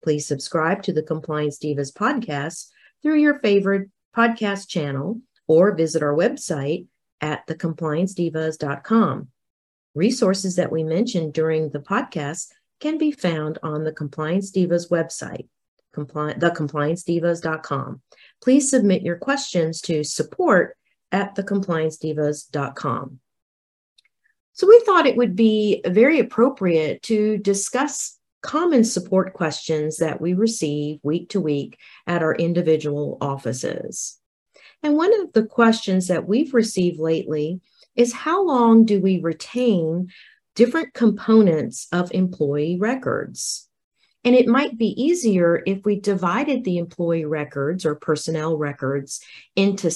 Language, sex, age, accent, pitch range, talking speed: English, female, 40-59, American, 155-225 Hz, 120 wpm